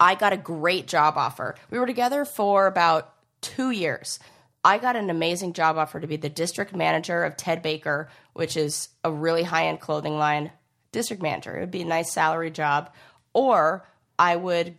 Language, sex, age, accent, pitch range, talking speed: English, female, 20-39, American, 145-180 Hz, 185 wpm